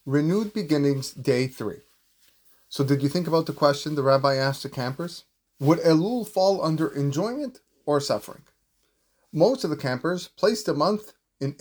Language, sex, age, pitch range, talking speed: English, male, 30-49, 125-155 Hz, 160 wpm